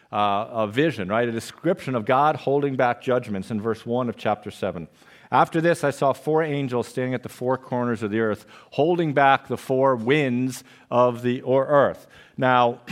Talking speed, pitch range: 190 wpm, 125-155 Hz